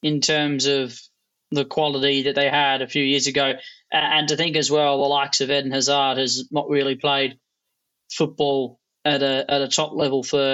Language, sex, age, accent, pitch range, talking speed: English, male, 20-39, Australian, 135-150 Hz, 200 wpm